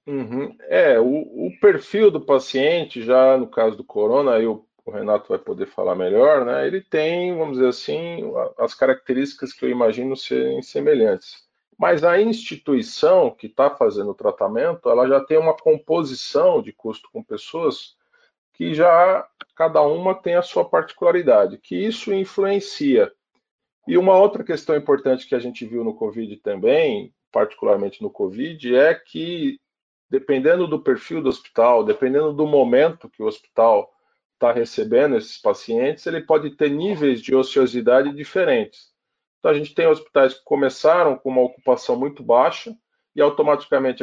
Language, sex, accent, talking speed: Portuguese, male, Brazilian, 155 wpm